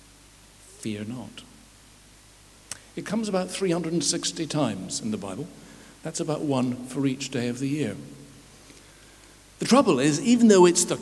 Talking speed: 140 wpm